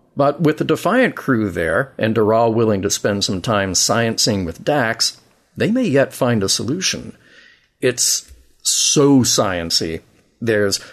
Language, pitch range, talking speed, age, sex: English, 105-135 Hz, 145 wpm, 40-59, male